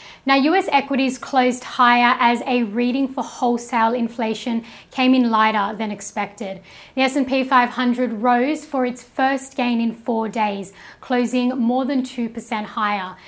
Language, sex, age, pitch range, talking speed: English, female, 10-29, 225-260 Hz, 145 wpm